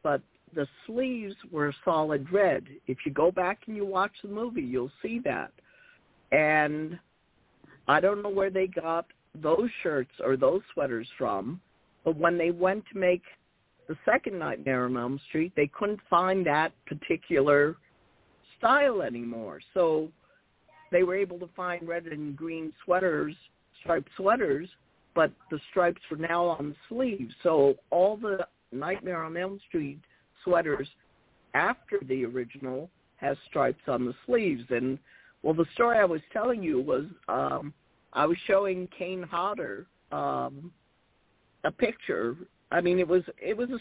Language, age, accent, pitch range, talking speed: English, 50-69, American, 155-205 Hz, 150 wpm